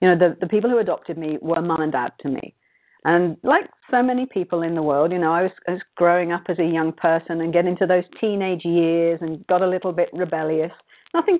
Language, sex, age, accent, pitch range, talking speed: English, female, 40-59, British, 160-195 Hz, 240 wpm